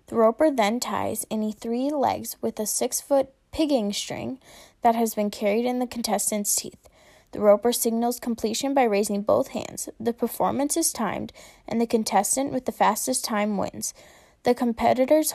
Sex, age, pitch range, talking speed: female, 10-29, 205-250 Hz, 165 wpm